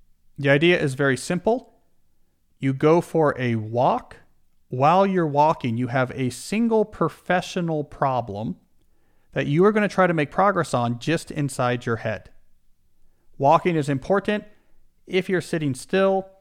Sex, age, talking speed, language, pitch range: male, 40-59, 145 wpm, English, 120-160 Hz